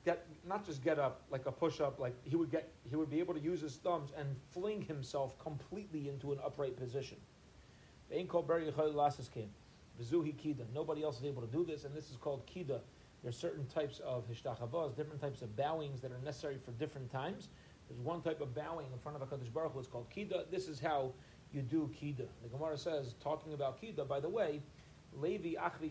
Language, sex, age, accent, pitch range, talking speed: English, male, 30-49, American, 130-160 Hz, 200 wpm